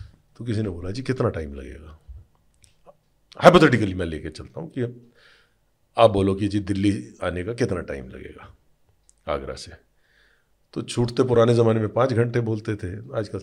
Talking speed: 160 wpm